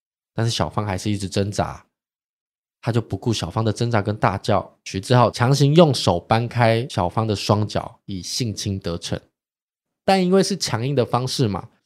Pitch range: 100-135 Hz